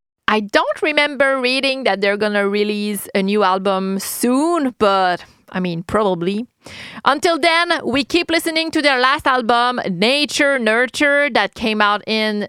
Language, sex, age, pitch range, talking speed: English, female, 30-49, 220-315 Hz, 155 wpm